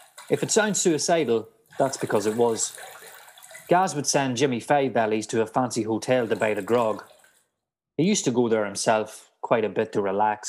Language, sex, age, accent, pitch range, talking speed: English, male, 30-49, Irish, 105-140 Hz, 190 wpm